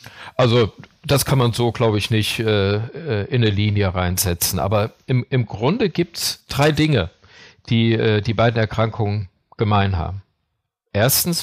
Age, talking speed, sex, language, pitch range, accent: 50-69, 155 wpm, male, German, 105-130 Hz, German